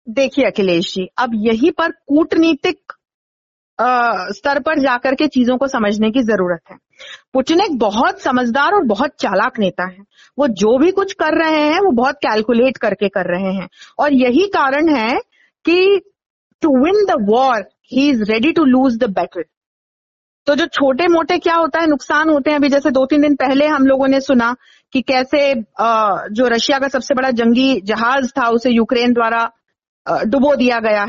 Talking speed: 180 wpm